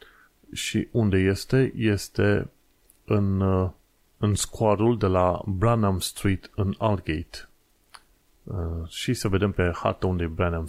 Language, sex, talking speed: Romanian, male, 120 wpm